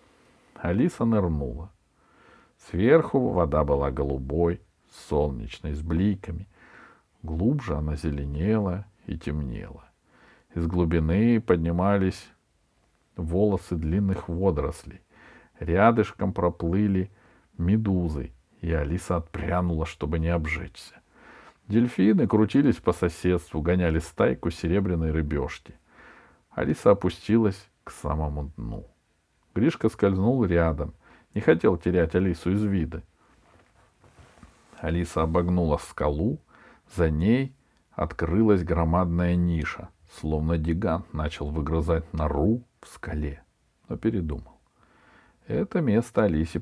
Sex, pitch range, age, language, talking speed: male, 80-100 Hz, 50-69, Russian, 90 wpm